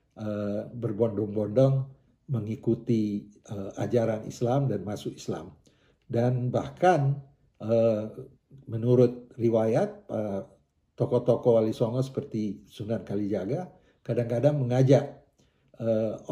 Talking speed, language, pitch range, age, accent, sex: 90 wpm, Indonesian, 110-135 Hz, 50-69, native, male